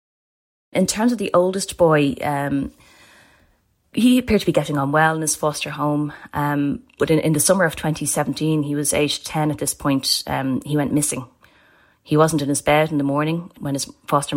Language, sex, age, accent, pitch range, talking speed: English, female, 30-49, Irish, 135-155 Hz, 200 wpm